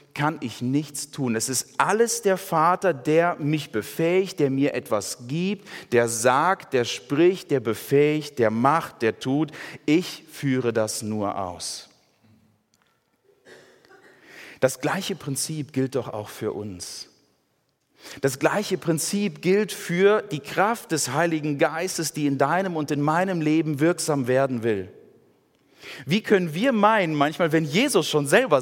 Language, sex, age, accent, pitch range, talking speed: German, male, 40-59, German, 135-180 Hz, 145 wpm